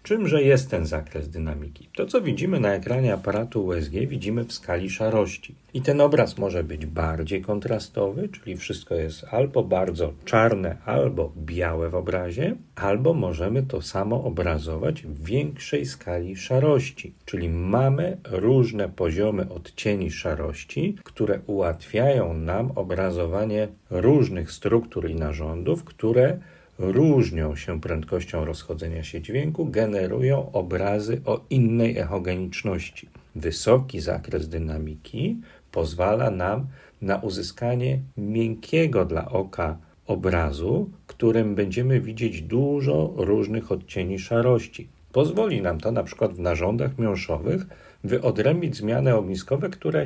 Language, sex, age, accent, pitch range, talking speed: Polish, male, 40-59, native, 90-130 Hz, 115 wpm